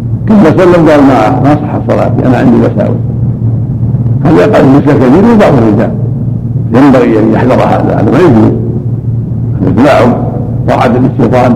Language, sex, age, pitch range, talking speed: Arabic, male, 60-79, 115-130 Hz, 125 wpm